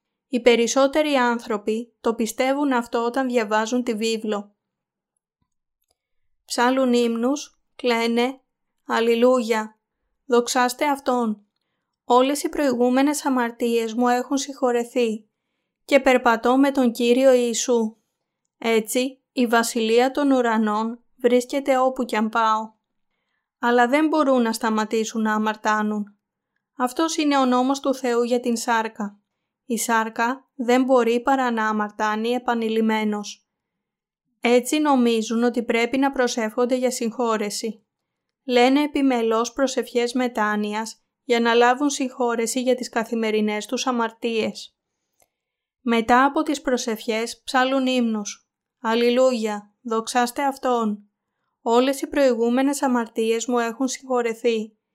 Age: 20-39